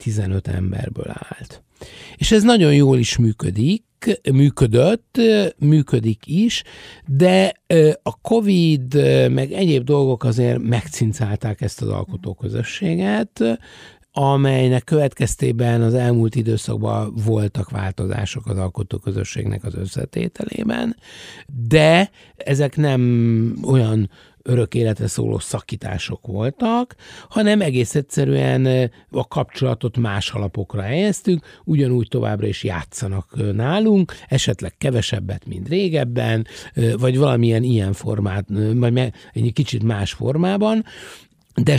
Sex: male